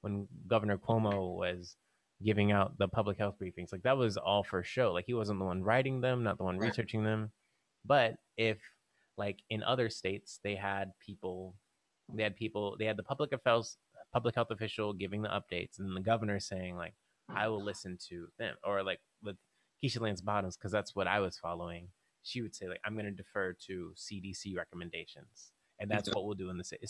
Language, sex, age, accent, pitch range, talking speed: English, male, 20-39, American, 95-115 Hz, 205 wpm